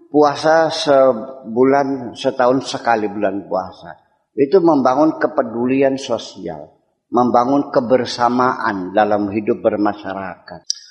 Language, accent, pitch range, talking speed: Indonesian, native, 110-145 Hz, 85 wpm